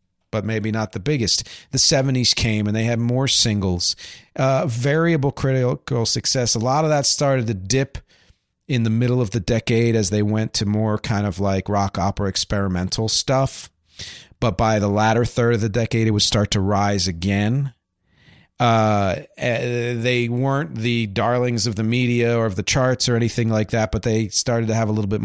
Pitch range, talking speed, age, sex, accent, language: 100-135 Hz, 190 wpm, 40-59, male, American, English